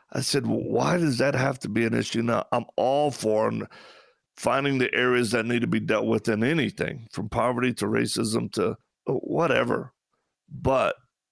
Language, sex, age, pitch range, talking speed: English, male, 50-69, 115-145 Hz, 170 wpm